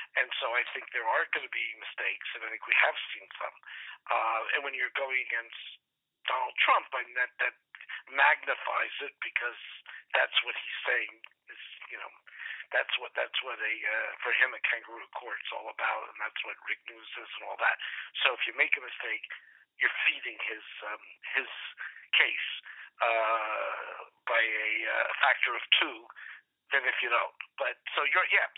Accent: American